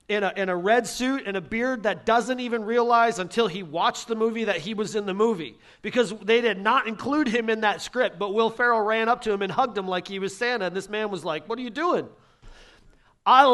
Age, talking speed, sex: 40-59, 255 wpm, male